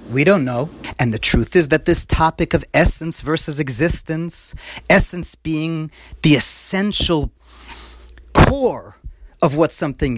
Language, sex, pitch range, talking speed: English, male, 160-235 Hz, 130 wpm